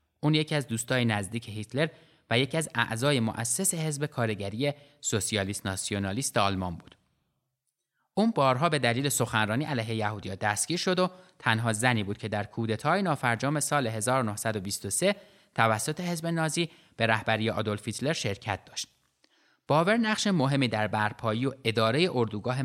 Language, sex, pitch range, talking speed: Persian, male, 110-150 Hz, 140 wpm